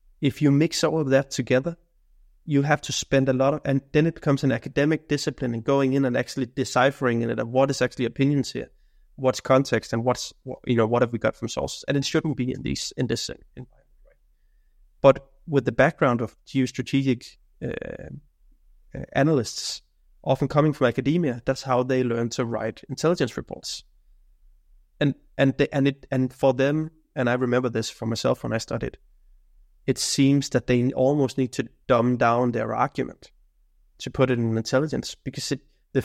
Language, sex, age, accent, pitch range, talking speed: English, male, 20-39, Danish, 120-140 Hz, 190 wpm